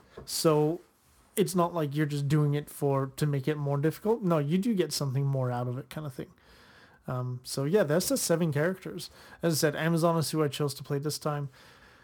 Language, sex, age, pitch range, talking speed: English, male, 30-49, 140-170 Hz, 225 wpm